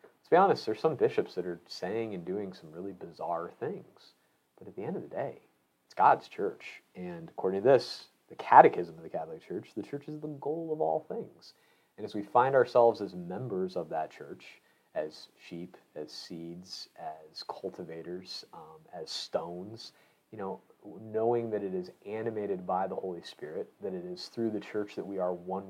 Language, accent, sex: English, American, male